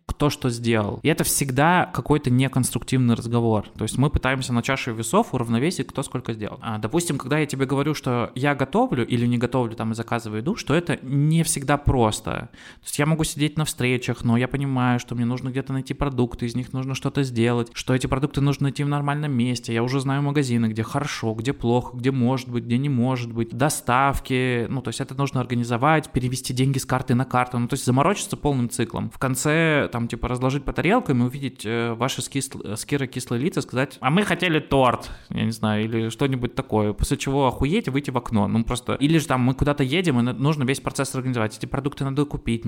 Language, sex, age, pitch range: Russian, male, 20-39, 120-145 Hz